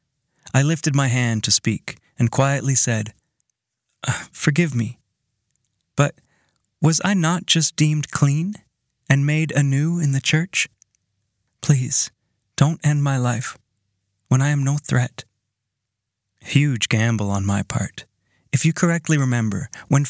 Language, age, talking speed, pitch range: English, 30-49, 135 wpm, 115-150 Hz